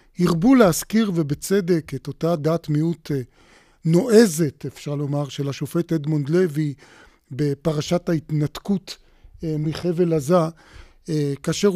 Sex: male